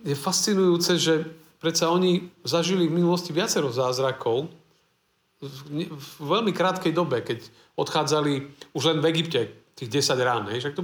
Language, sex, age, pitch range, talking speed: Slovak, male, 50-69, 130-175 Hz, 135 wpm